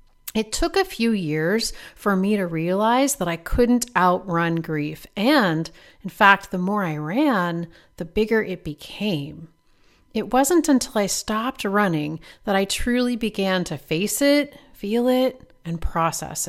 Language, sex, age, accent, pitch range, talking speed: English, female, 40-59, American, 170-230 Hz, 155 wpm